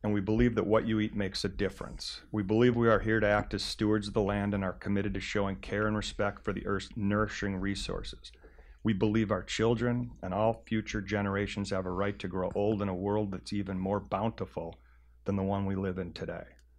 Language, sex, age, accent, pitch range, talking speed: English, male, 40-59, American, 95-110 Hz, 225 wpm